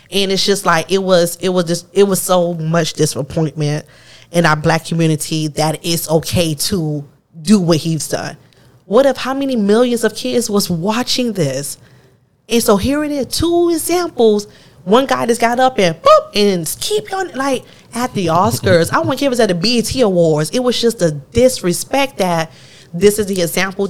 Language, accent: English, American